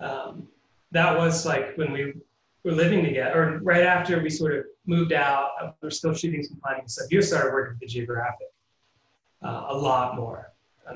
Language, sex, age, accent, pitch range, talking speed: English, male, 30-49, American, 125-165 Hz, 185 wpm